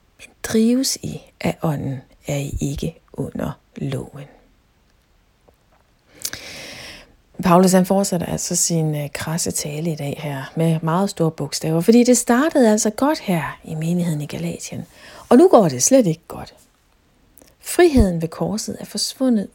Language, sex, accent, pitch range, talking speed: Danish, female, native, 165-230 Hz, 135 wpm